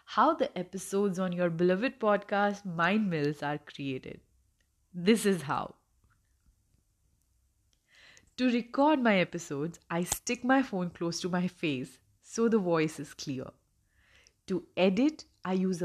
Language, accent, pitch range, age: English, Indian, 150-200 Hz, 30-49